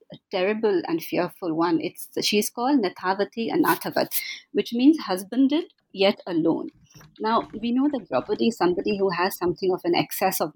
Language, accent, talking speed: English, Indian, 165 wpm